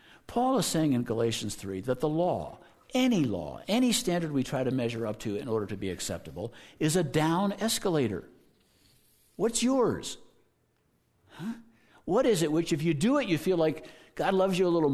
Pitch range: 110-170 Hz